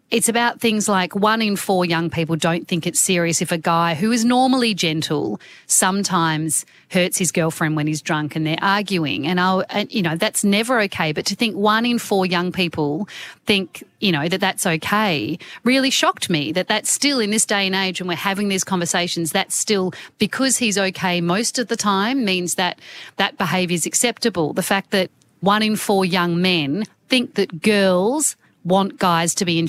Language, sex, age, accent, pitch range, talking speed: English, female, 40-59, Australian, 170-215 Hz, 200 wpm